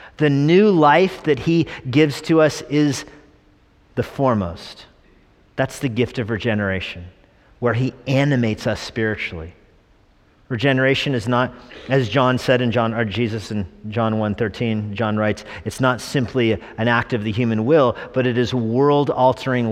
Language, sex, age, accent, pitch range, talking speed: English, male, 40-59, American, 110-140 Hz, 155 wpm